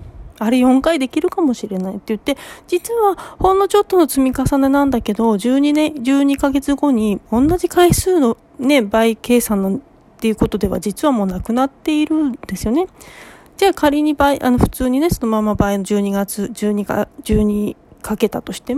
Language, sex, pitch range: Japanese, female, 210-290 Hz